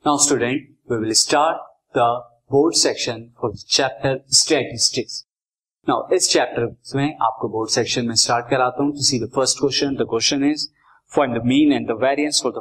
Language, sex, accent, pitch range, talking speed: Hindi, male, native, 120-150 Hz, 100 wpm